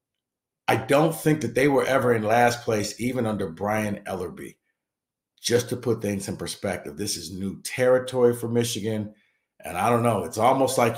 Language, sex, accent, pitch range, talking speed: English, male, American, 100-130 Hz, 180 wpm